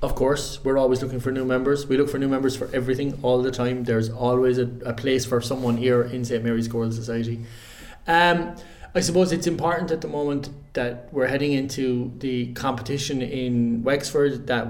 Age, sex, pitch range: 20-39, male, 120-140 Hz